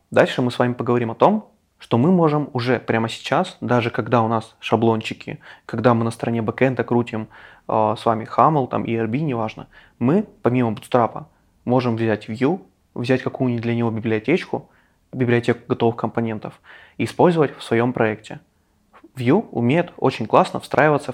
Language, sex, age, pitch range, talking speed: English, male, 20-39, 115-140 Hz, 160 wpm